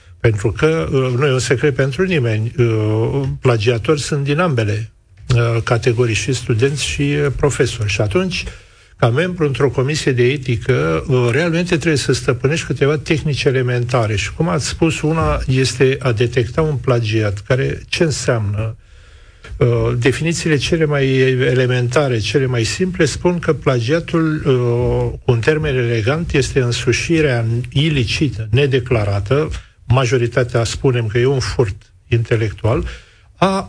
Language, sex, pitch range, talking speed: Romanian, male, 115-150 Hz, 125 wpm